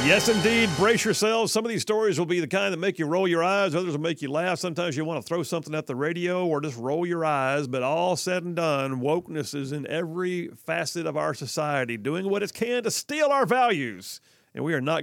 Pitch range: 135-180 Hz